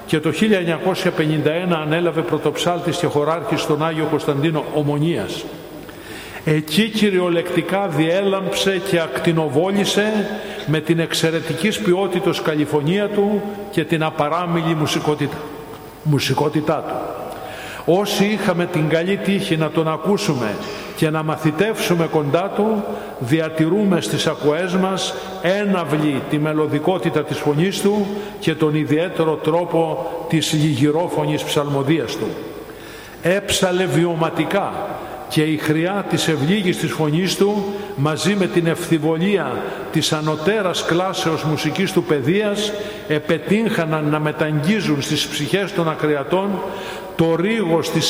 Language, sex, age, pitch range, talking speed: Greek, male, 50-69, 155-190 Hz, 110 wpm